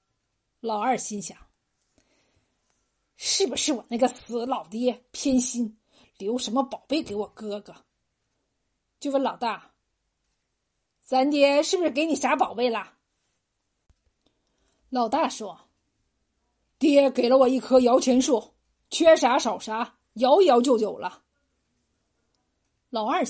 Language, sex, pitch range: Chinese, female, 215-275 Hz